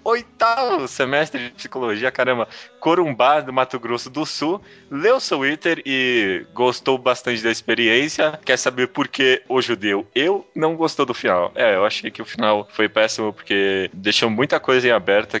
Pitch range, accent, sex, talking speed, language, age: 110-160 Hz, Brazilian, male, 170 wpm, Portuguese, 20-39